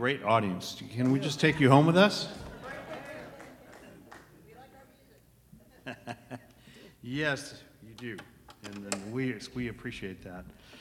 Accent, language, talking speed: American, English, 105 wpm